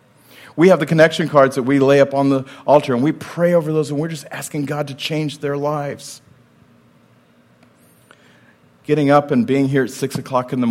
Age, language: 40-59, English